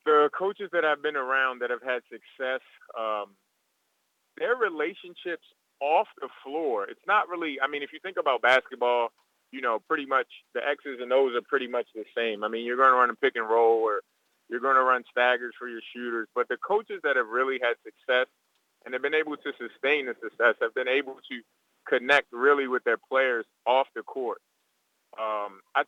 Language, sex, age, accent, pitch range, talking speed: English, male, 30-49, American, 120-190 Hz, 205 wpm